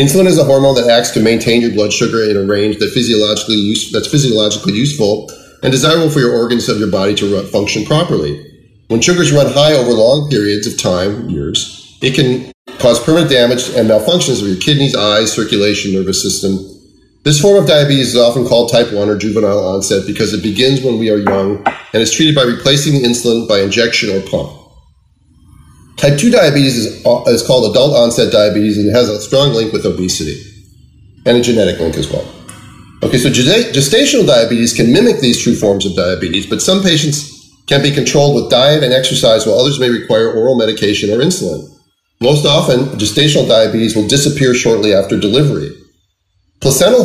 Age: 30-49